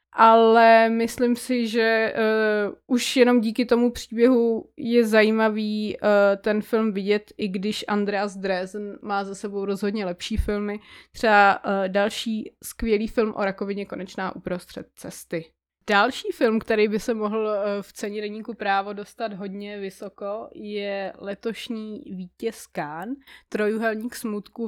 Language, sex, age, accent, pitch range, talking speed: Czech, female, 20-39, native, 205-235 Hz, 135 wpm